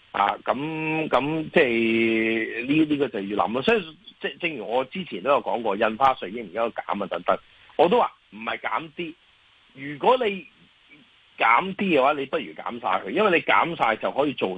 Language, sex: Chinese, male